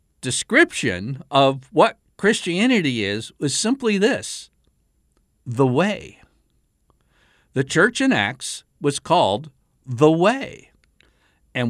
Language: English